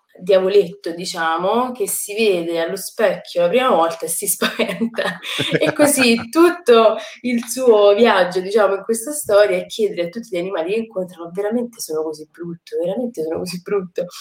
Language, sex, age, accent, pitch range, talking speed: Italian, female, 20-39, native, 160-230 Hz, 165 wpm